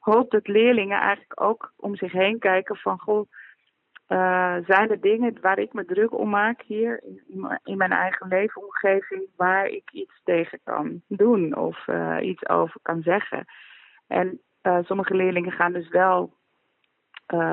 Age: 30-49